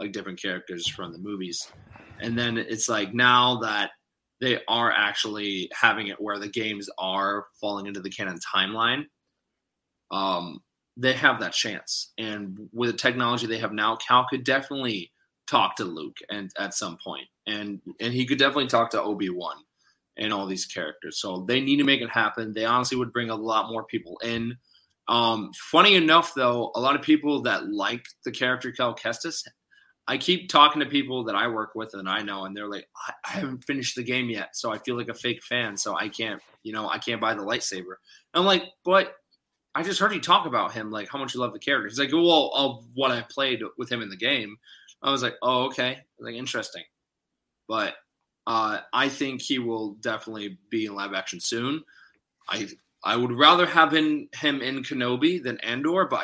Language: English